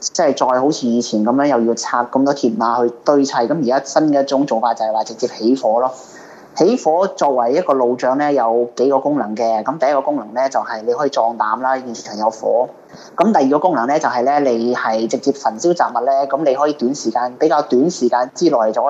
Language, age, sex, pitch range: Chinese, 20-39, male, 115-140 Hz